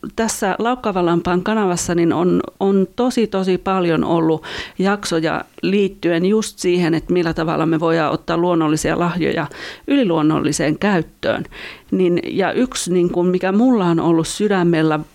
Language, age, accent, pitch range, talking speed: Finnish, 40-59, native, 160-200 Hz, 135 wpm